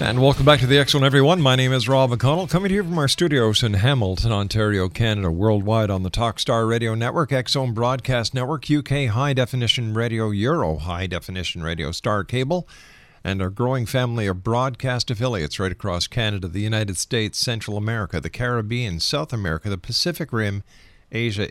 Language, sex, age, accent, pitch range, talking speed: English, male, 50-69, American, 105-130 Hz, 180 wpm